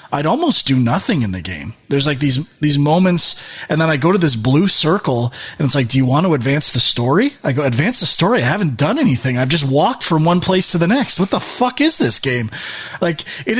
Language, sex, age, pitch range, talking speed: English, male, 30-49, 135-205 Hz, 245 wpm